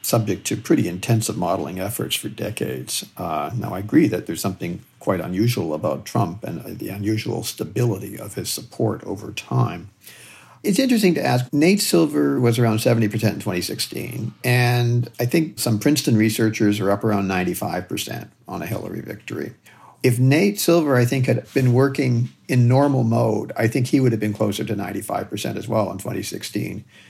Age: 50-69